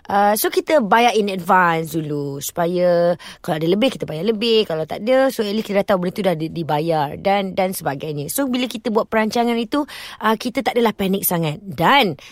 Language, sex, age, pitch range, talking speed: Malay, female, 20-39, 175-255 Hz, 205 wpm